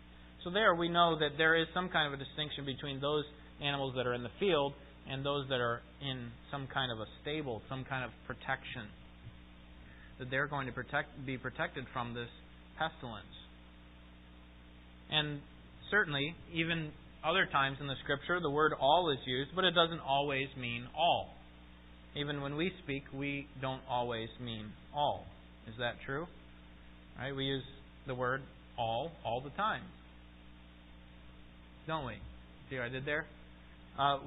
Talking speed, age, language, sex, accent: 160 wpm, 30-49, English, male, American